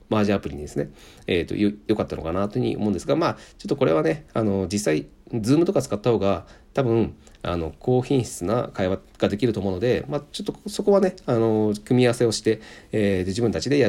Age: 40-59